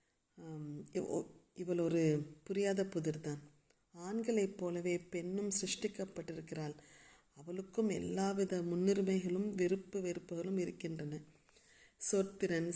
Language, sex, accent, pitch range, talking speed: Tamil, female, native, 165-195 Hz, 75 wpm